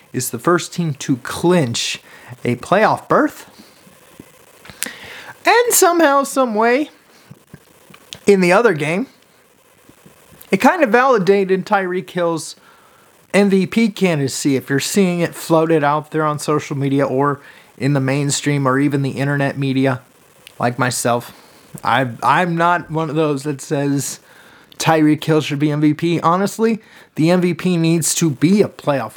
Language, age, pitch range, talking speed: English, 30-49, 140-190 Hz, 140 wpm